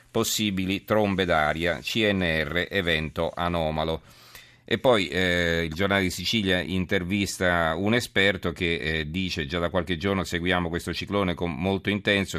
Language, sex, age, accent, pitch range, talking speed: Italian, male, 40-59, native, 85-95 Hz, 140 wpm